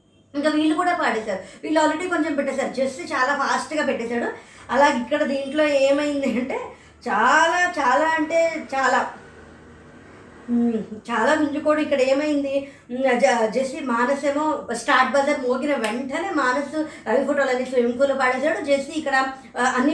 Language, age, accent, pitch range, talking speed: Telugu, 20-39, native, 255-310 Hz, 125 wpm